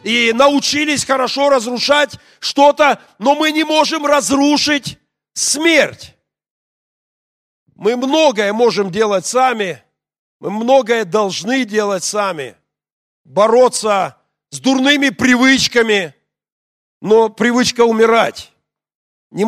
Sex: male